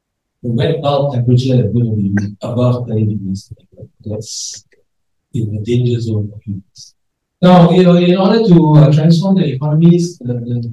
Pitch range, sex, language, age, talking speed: 110-140 Hz, male, English, 50-69, 150 wpm